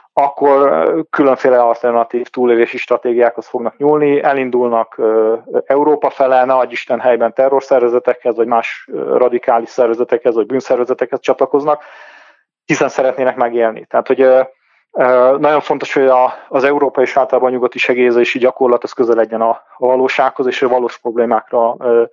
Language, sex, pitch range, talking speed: Hungarian, male, 125-140 Hz, 125 wpm